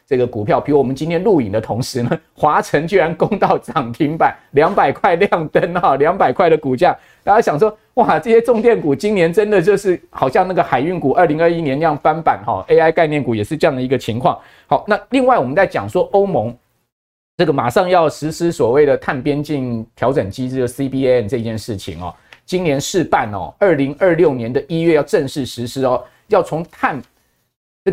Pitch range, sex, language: 120-175 Hz, male, Chinese